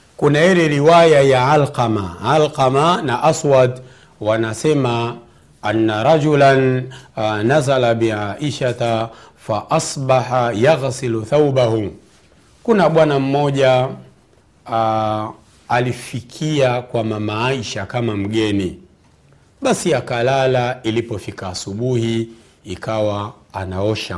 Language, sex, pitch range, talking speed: Swahili, male, 115-170 Hz, 85 wpm